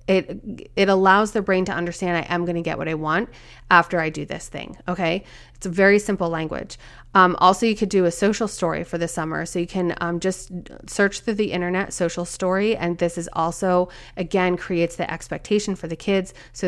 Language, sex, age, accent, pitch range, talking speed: English, female, 30-49, American, 170-200 Hz, 215 wpm